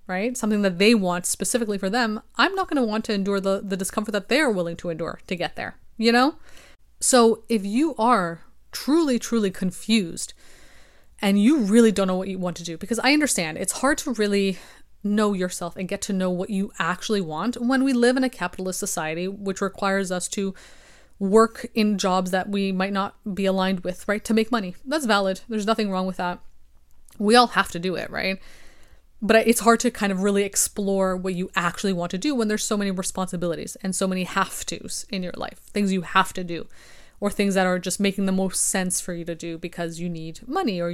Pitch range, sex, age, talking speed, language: 185-220 Hz, female, 20-39, 220 wpm, English